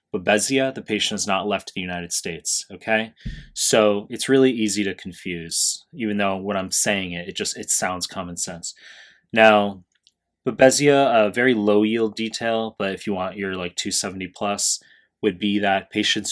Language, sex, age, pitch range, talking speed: English, male, 20-39, 90-110 Hz, 175 wpm